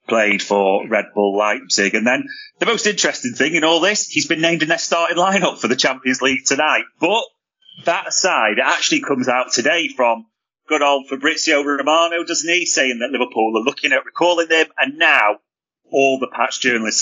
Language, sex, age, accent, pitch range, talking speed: English, male, 30-49, British, 115-175 Hz, 195 wpm